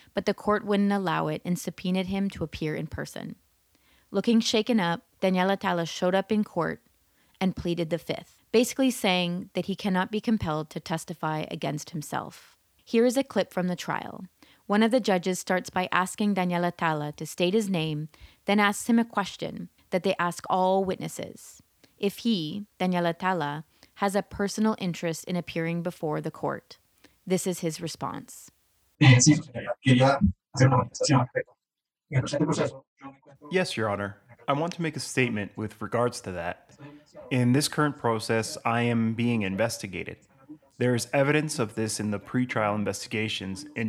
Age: 30-49